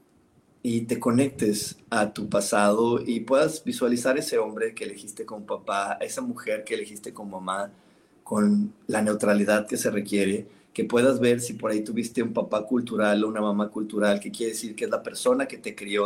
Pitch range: 105-165 Hz